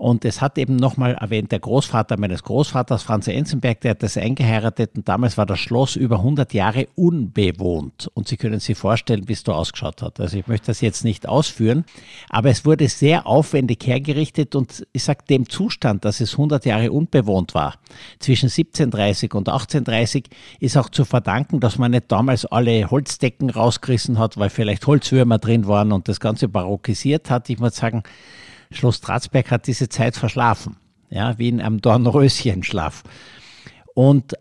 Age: 60-79